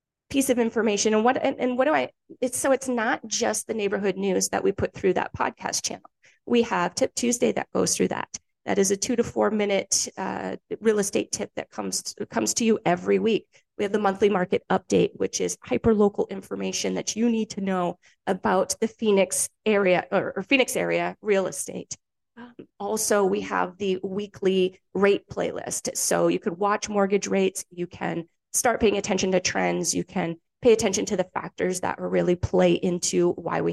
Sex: female